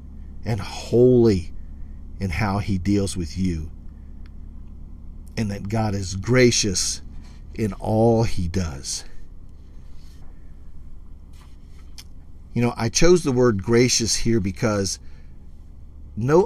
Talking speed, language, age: 100 wpm, English, 50-69